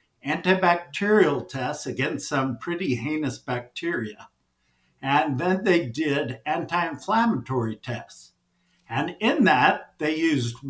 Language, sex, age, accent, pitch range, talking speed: English, male, 60-79, American, 125-160 Hz, 100 wpm